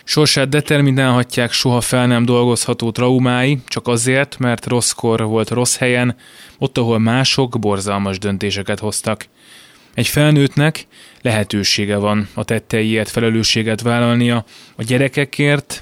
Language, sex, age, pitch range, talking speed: Hungarian, male, 20-39, 110-125 Hz, 120 wpm